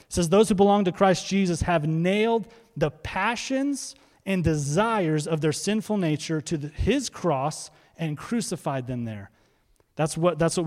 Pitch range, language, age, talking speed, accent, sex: 160-215 Hz, English, 30-49, 155 wpm, American, male